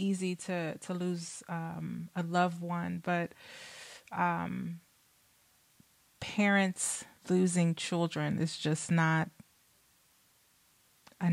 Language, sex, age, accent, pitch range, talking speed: English, female, 20-39, American, 170-190 Hz, 90 wpm